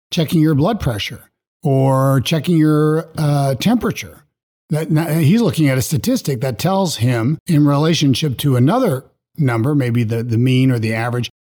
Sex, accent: male, American